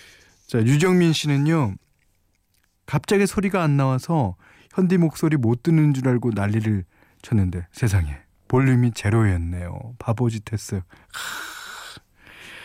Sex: male